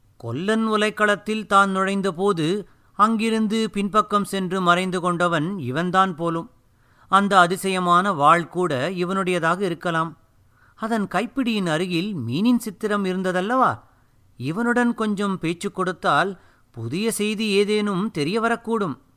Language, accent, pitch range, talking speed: Tamil, native, 155-210 Hz, 95 wpm